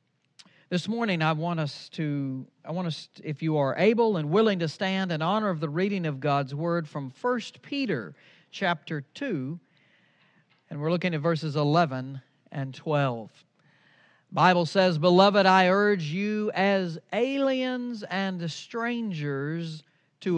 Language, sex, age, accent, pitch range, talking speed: English, male, 50-69, American, 150-195 Hz, 145 wpm